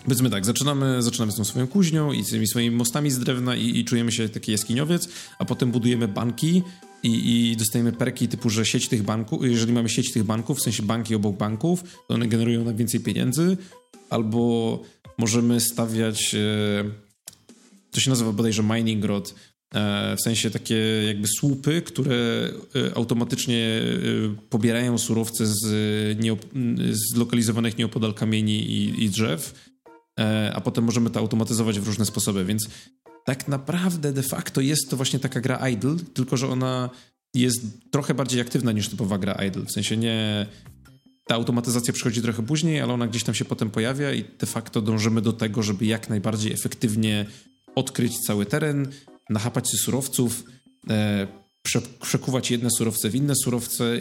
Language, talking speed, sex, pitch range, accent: Polish, 160 wpm, male, 110-130 Hz, native